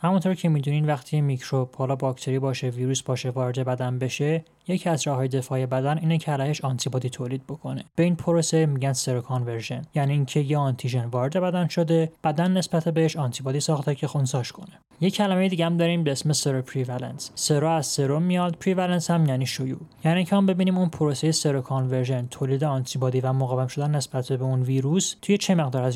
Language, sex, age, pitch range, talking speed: Persian, male, 20-39, 130-165 Hz, 190 wpm